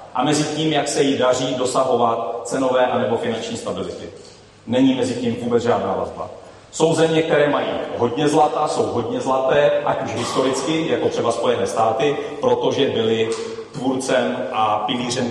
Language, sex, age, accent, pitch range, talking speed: Czech, male, 30-49, native, 120-155 Hz, 155 wpm